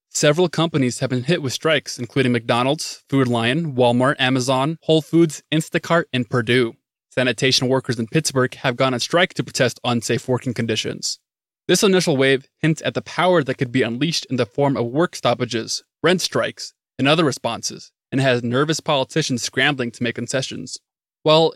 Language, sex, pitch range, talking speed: English, male, 125-150 Hz, 175 wpm